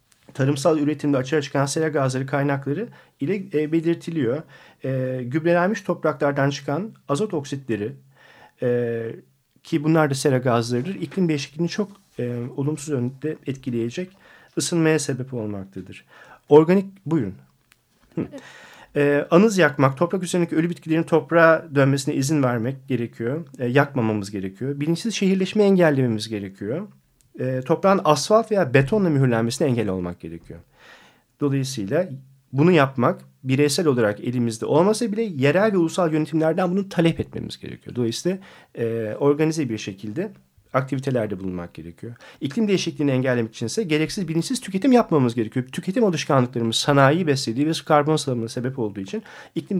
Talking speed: 120 wpm